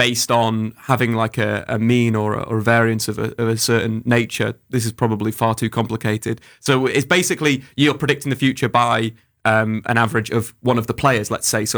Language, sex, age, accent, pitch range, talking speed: English, male, 20-39, British, 115-130 Hz, 220 wpm